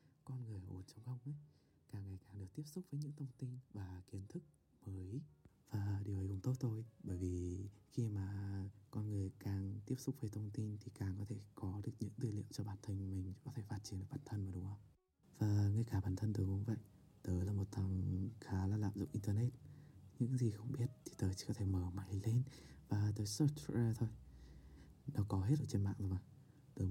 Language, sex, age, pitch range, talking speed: Vietnamese, male, 20-39, 95-125 Hz, 230 wpm